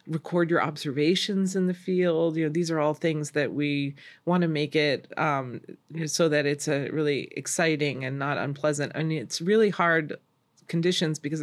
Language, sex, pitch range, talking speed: English, female, 145-175 Hz, 190 wpm